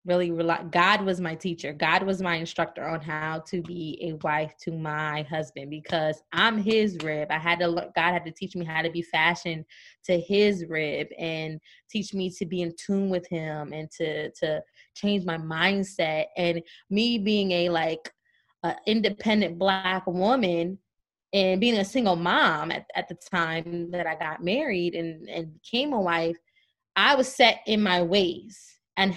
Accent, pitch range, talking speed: American, 170-225 Hz, 175 wpm